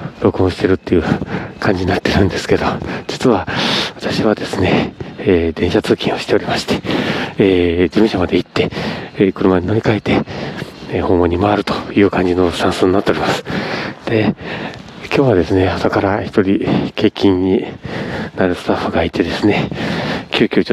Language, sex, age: Japanese, male, 40-59